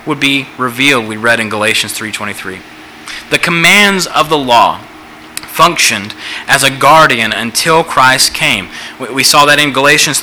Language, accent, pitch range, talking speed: English, American, 130-175 Hz, 145 wpm